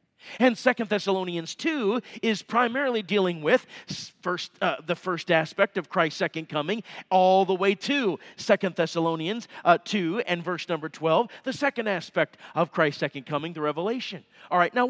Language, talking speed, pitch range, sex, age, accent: English, 160 wpm, 180-245 Hz, male, 40-59, American